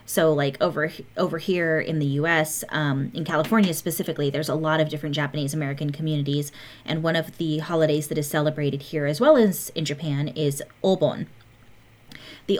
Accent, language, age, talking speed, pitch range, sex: American, English, 30-49, 170 wpm, 150-180 Hz, female